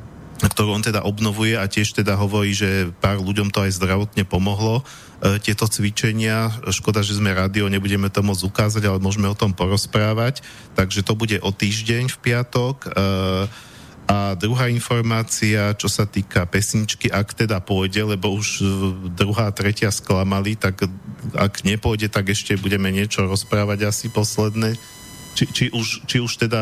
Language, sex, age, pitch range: Slovak, male, 40-59, 95-110 Hz